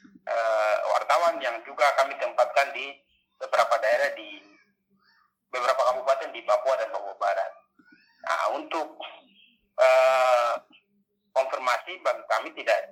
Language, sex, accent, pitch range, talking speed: Indonesian, male, native, 120-200 Hz, 105 wpm